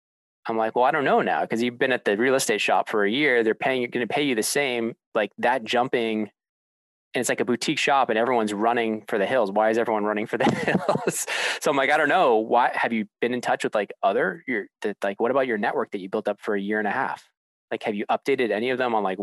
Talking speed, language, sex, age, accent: 280 wpm, English, male, 20-39, American